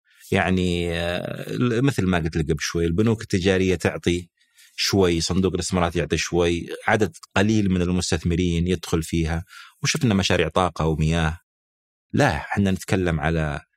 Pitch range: 85-100 Hz